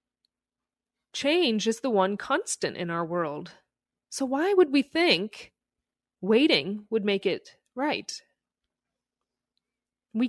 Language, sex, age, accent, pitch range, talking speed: English, female, 30-49, American, 195-275 Hz, 110 wpm